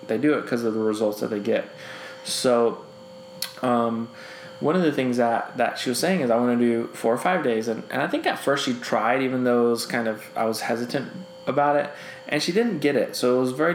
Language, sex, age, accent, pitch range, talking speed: English, male, 20-39, American, 115-135 Hz, 255 wpm